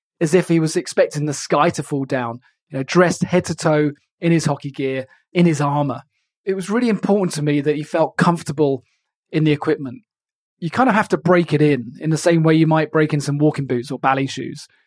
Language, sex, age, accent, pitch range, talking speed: English, male, 20-39, British, 140-165 Hz, 235 wpm